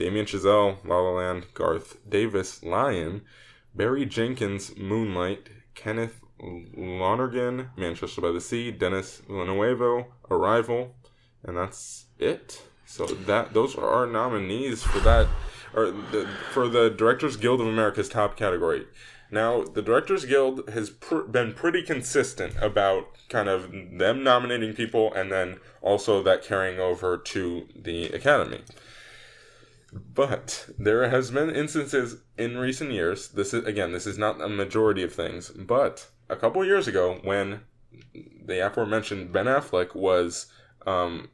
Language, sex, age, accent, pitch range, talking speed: English, male, 20-39, American, 95-125 Hz, 140 wpm